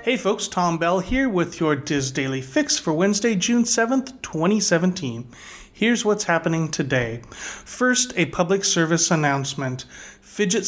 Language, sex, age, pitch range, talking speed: English, male, 30-49, 150-190 Hz, 140 wpm